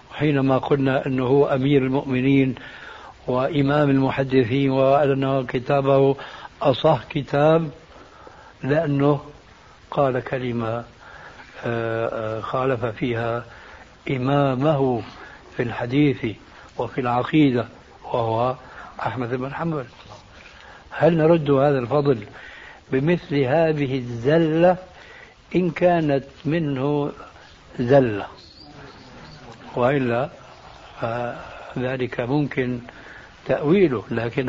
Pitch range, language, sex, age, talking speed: 130-160 Hz, Arabic, male, 60-79, 75 wpm